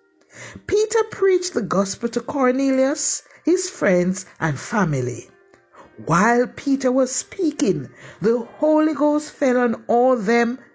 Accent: Nigerian